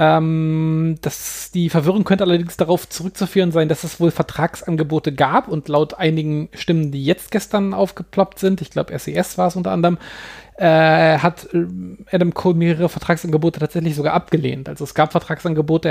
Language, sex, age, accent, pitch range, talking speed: German, male, 30-49, German, 150-175 Hz, 160 wpm